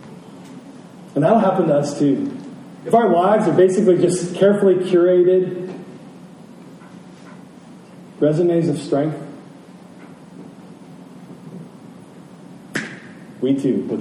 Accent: American